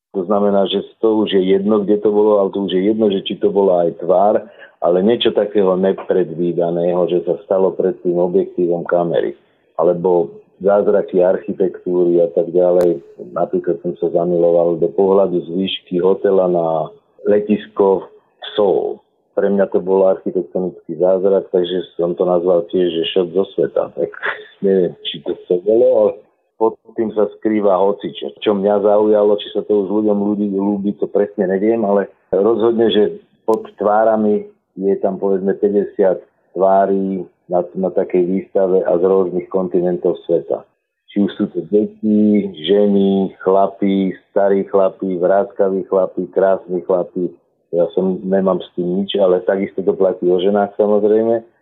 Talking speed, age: 160 wpm, 50-69